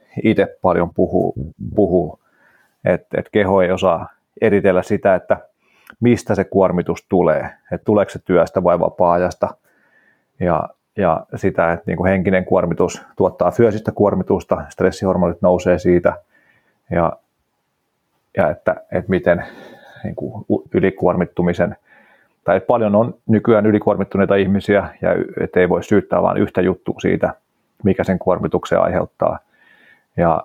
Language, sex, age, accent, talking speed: Finnish, male, 30-49, native, 120 wpm